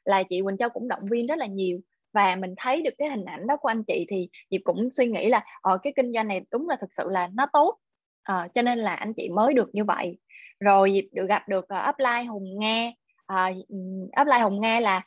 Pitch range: 195-250 Hz